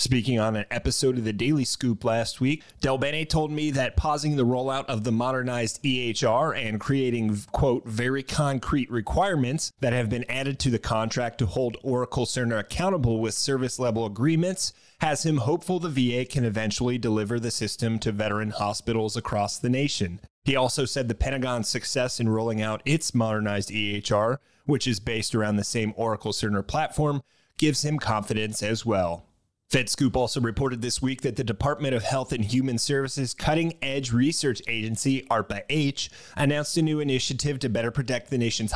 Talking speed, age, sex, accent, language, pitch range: 175 wpm, 30-49, male, American, English, 115-140 Hz